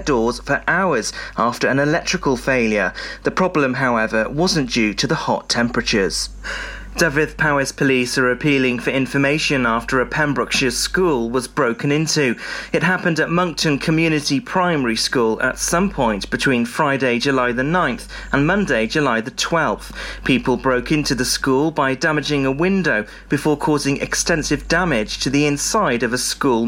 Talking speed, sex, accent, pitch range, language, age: 155 wpm, male, British, 125-150 Hz, English, 30-49